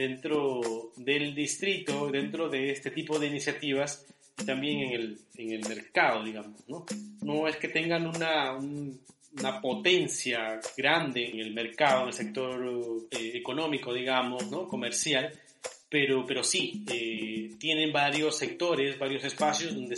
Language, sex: Spanish, male